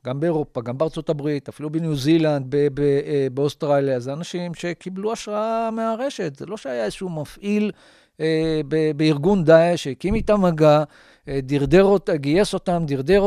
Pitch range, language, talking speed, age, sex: 140-180 Hz, Hebrew, 145 wpm, 50-69, male